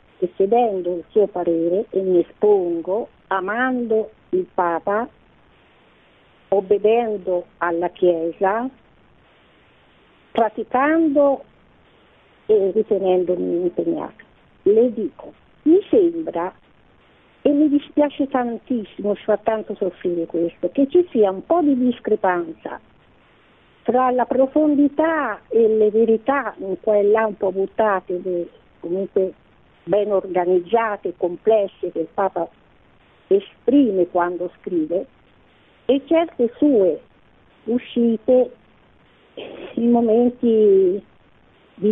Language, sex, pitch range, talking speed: Italian, female, 190-260 Hz, 90 wpm